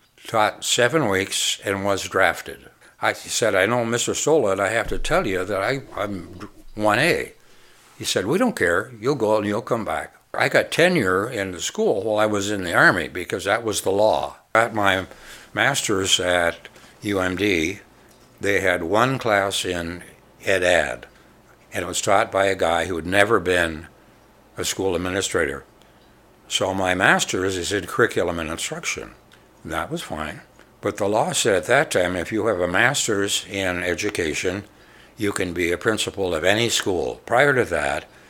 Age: 60-79